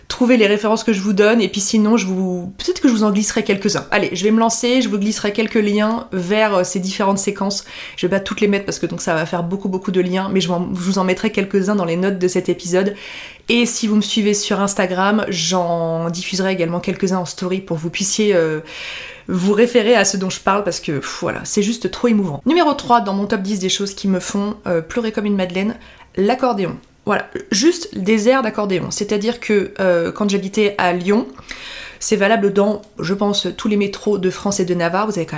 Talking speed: 235 wpm